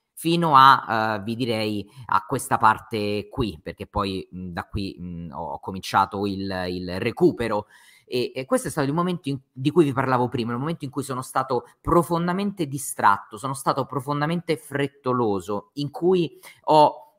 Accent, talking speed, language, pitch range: native, 155 wpm, Italian, 115-155 Hz